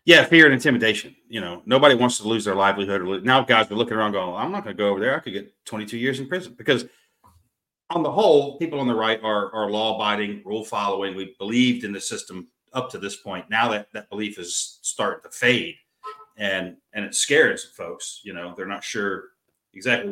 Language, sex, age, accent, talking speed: English, male, 40-59, American, 220 wpm